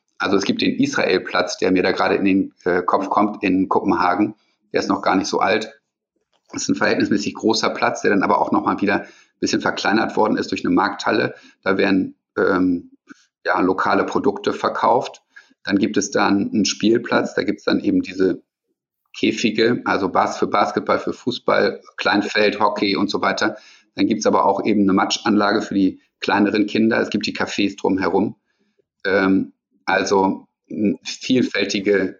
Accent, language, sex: German, German, male